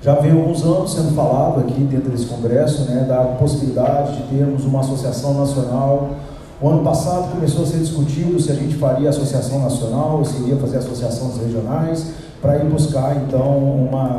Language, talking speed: Portuguese, 180 wpm